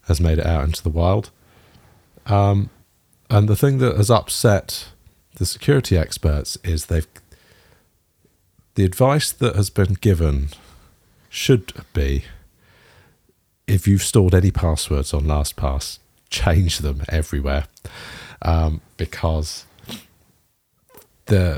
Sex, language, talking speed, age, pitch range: male, English, 110 wpm, 50-69, 75-95 Hz